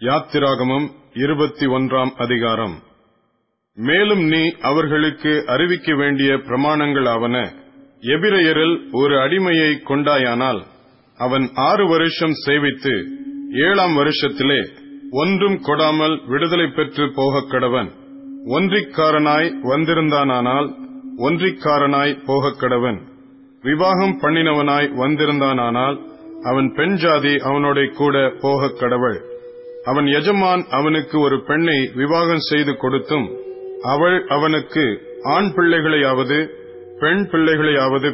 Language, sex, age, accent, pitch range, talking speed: Tamil, male, 30-49, native, 130-160 Hz, 85 wpm